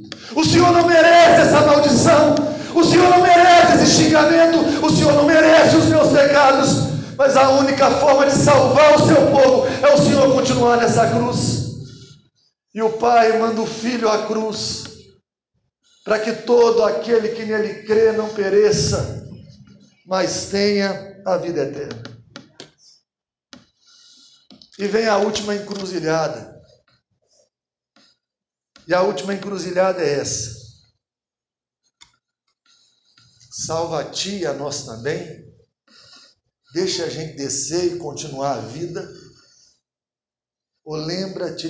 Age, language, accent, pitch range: 50-69, Portuguese, Brazilian, 160-260 Hz